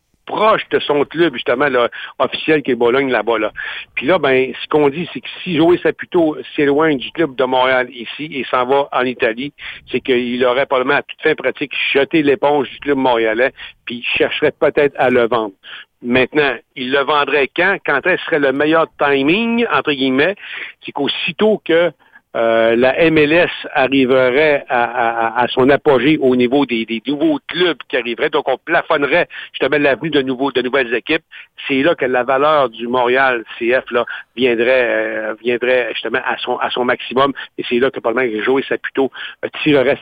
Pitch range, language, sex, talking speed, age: 125-155 Hz, French, male, 190 wpm, 60-79